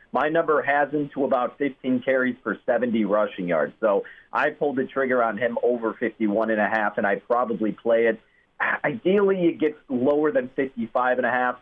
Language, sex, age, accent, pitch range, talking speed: English, male, 40-59, American, 115-150 Hz, 165 wpm